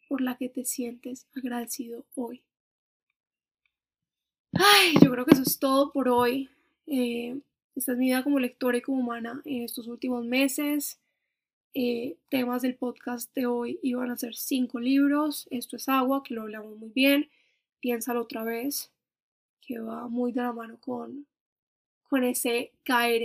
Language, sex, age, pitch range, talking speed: Spanish, female, 10-29, 235-270 Hz, 160 wpm